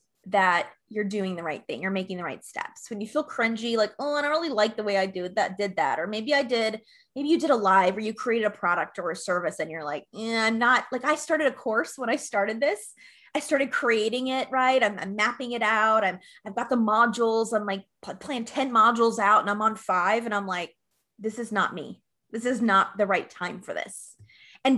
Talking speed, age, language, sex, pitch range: 245 wpm, 20-39, English, female, 205-250 Hz